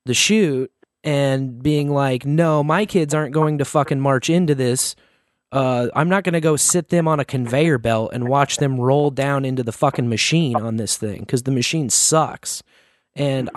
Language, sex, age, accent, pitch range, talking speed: English, male, 20-39, American, 120-155 Hz, 195 wpm